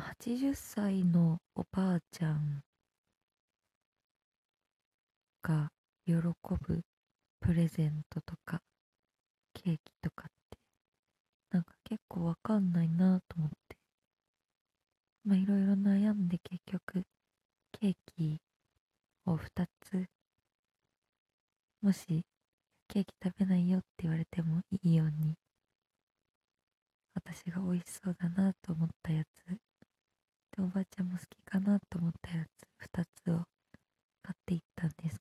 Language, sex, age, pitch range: Japanese, female, 20-39, 165-195 Hz